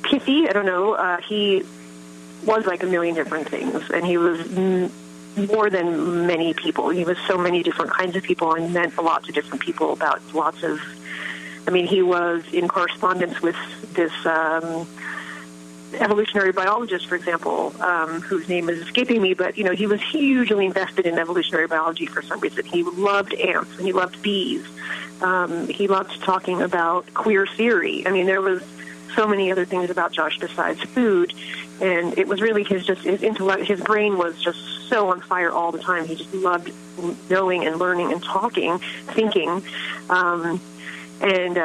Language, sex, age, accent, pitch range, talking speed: English, female, 30-49, American, 165-195 Hz, 180 wpm